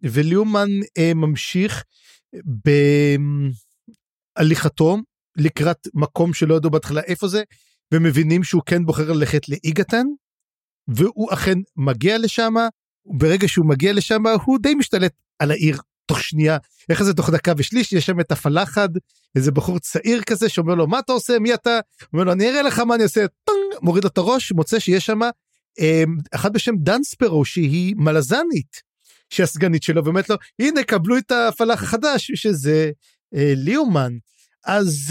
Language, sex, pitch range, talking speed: Hebrew, male, 155-220 Hz, 145 wpm